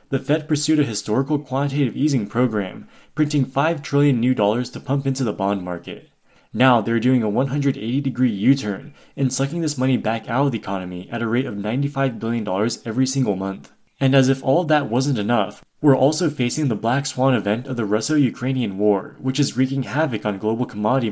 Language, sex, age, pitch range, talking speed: English, male, 20-39, 110-140 Hz, 200 wpm